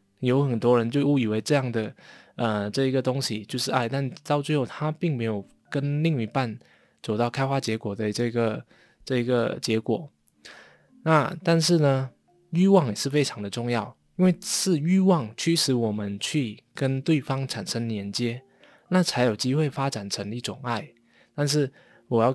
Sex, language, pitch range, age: male, Chinese, 115-150 Hz, 20-39